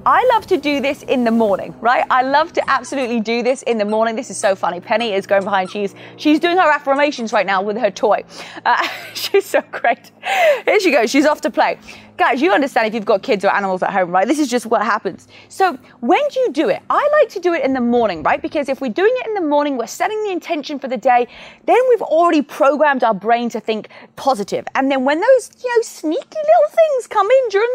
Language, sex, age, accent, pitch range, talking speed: English, female, 30-49, British, 230-330 Hz, 250 wpm